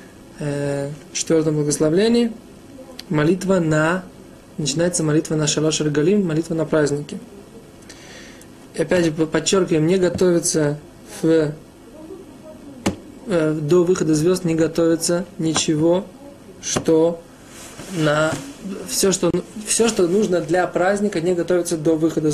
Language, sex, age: Russian, male, 20-39